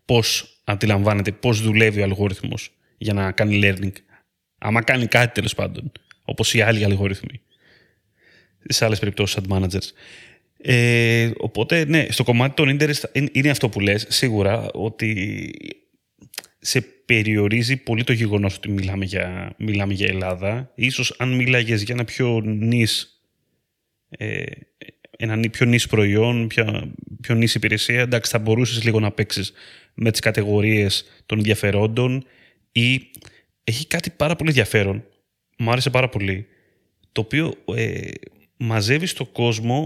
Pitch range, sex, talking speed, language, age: 105-125 Hz, male, 135 wpm, Greek, 30-49